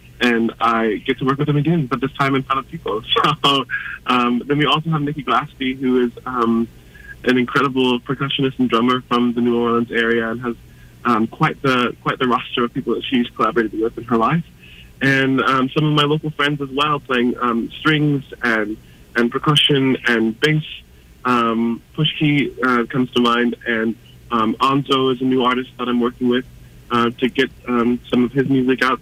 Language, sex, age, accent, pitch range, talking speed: English, male, 20-39, American, 115-135 Hz, 200 wpm